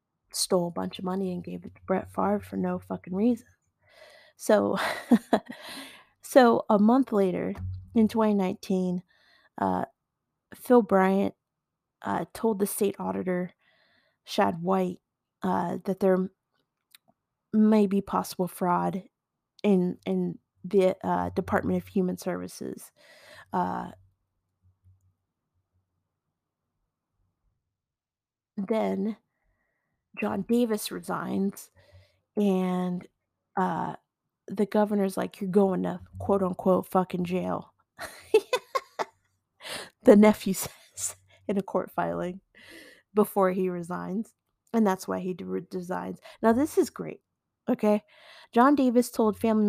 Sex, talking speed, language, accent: female, 105 wpm, English, American